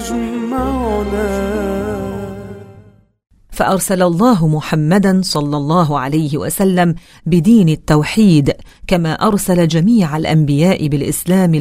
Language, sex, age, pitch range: English, female, 40-59, 155-190 Hz